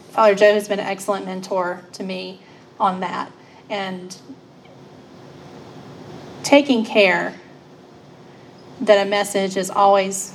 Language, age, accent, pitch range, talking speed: English, 30-49, American, 200-245 Hz, 110 wpm